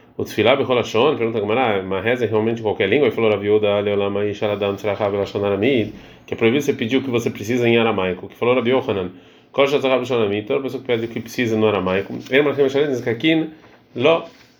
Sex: male